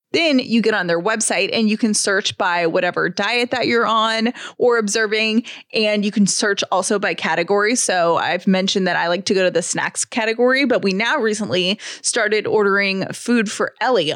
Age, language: 20-39, English